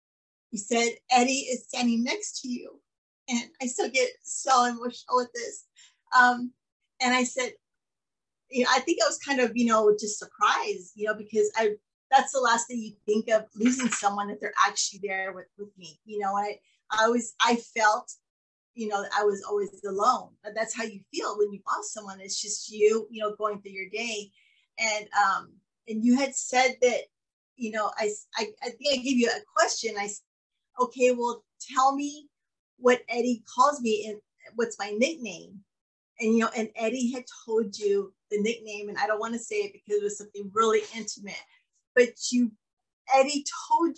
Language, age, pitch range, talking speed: English, 30-49, 210-250 Hz, 195 wpm